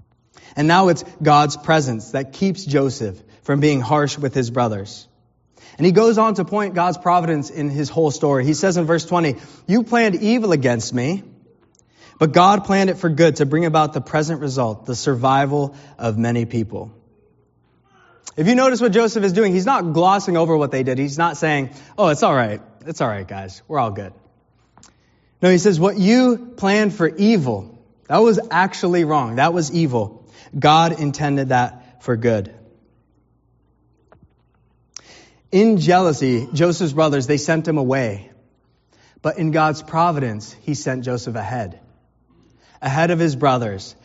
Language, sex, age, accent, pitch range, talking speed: English, male, 20-39, American, 125-170 Hz, 165 wpm